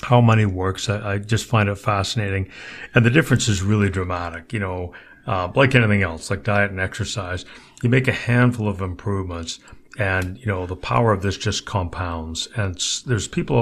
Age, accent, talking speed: 60-79, American, 190 wpm